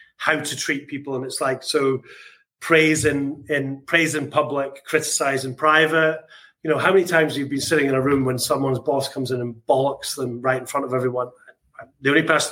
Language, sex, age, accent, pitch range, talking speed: English, male, 30-49, British, 130-155 Hz, 210 wpm